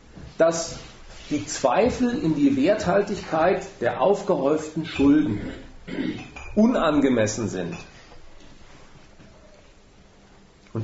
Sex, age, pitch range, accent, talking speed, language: male, 40-59, 145-200 Hz, German, 65 wpm, German